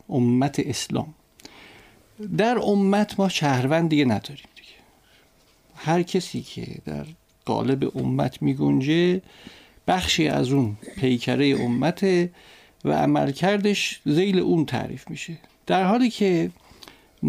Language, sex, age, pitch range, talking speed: Persian, male, 50-69, 120-170 Hz, 105 wpm